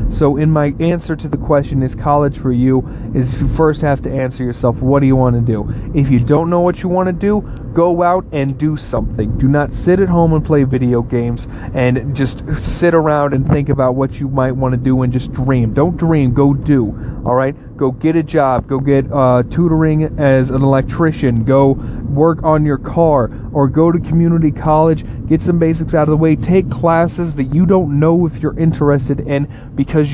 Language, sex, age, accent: English, male, 30-49, American